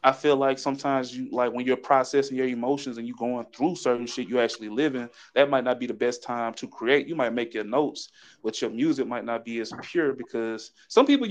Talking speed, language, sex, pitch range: 240 wpm, English, male, 115-135 Hz